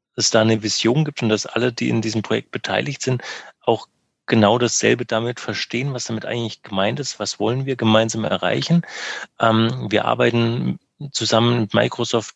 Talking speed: 175 wpm